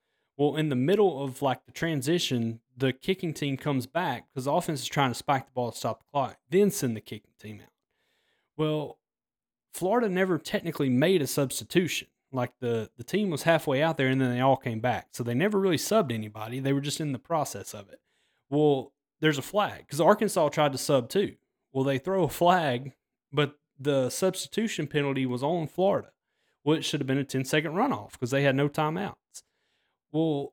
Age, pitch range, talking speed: 30-49, 125-155 Hz, 200 wpm